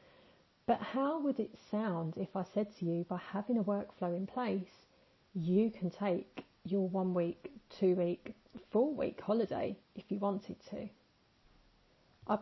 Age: 40-59